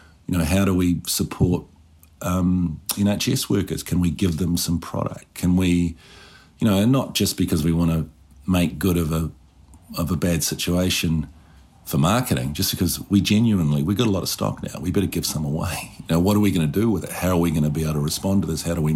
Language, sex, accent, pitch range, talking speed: English, male, Australian, 80-95 Hz, 235 wpm